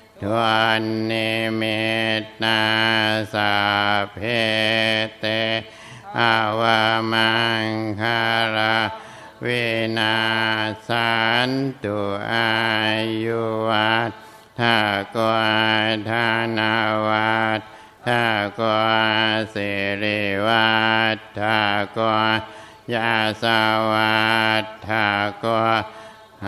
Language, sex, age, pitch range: Thai, male, 60-79, 110-115 Hz